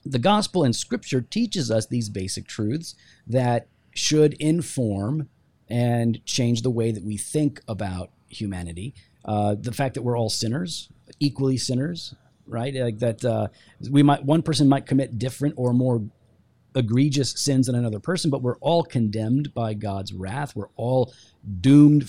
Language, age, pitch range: English, 40-59, 115-145 Hz